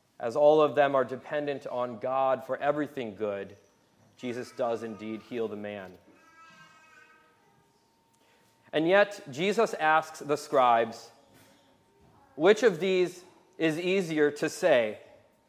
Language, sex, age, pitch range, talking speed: English, male, 30-49, 130-185 Hz, 115 wpm